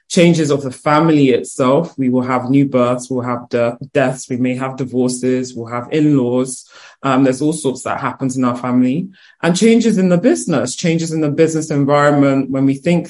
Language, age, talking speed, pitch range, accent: English, 20-39, 195 wpm, 135-155 Hz, British